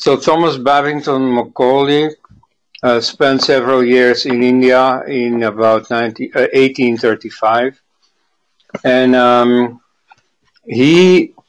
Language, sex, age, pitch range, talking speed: Hindi, male, 50-69, 120-135 Hz, 95 wpm